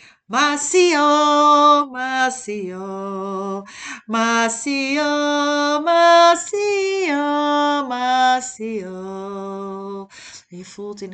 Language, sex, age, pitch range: Dutch, female, 30-49, 195-285 Hz